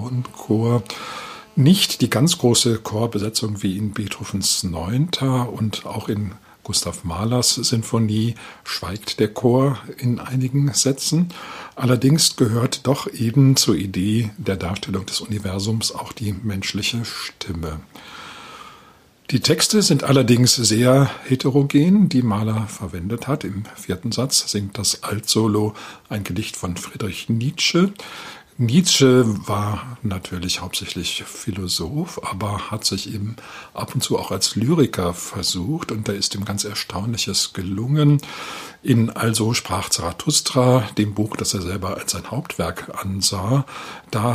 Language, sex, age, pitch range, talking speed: German, male, 50-69, 105-130 Hz, 130 wpm